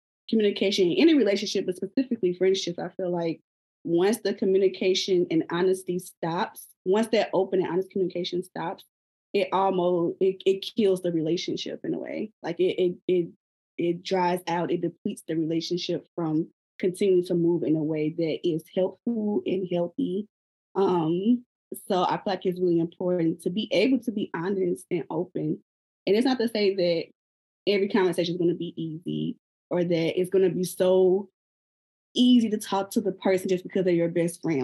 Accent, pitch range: American, 170-195 Hz